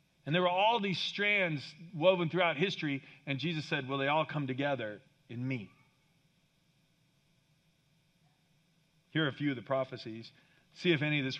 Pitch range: 120-155 Hz